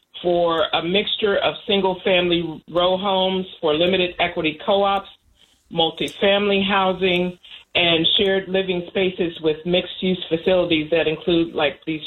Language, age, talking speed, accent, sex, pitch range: English, 40-59, 120 wpm, American, female, 160-190 Hz